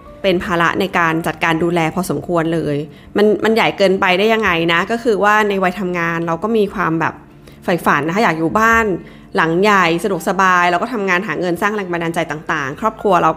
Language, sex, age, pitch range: Thai, female, 20-39, 165-205 Hz